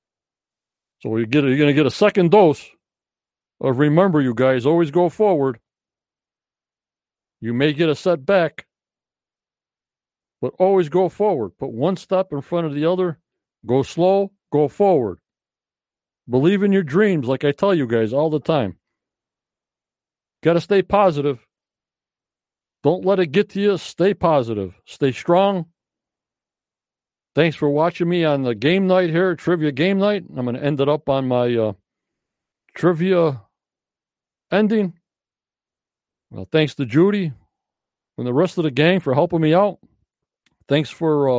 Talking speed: 150 wpm